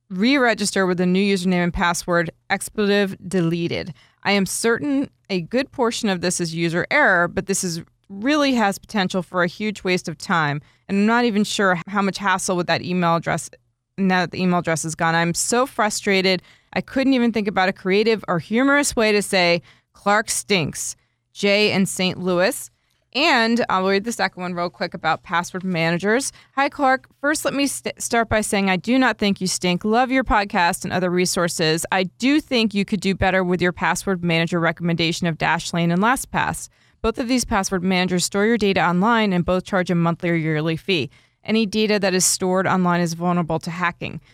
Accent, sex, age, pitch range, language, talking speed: American, female, 20-39, 170-210 Hz, English, 200 wpm